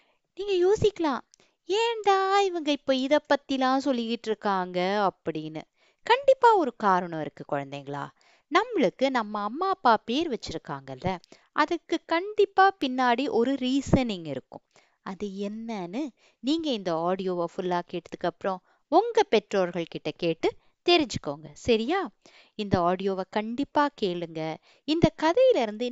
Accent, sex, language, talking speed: native, female, Tamil, 105 wpm